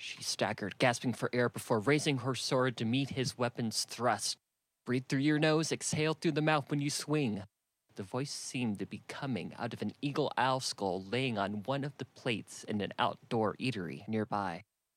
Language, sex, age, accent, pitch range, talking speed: English, male, 30-49, American, 110-135 Hz, 195 wpm